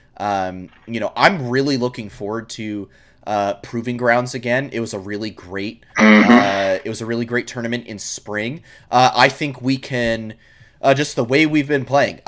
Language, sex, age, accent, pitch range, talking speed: English, male, 30-49, American, 105-125 Hz, 185 wpm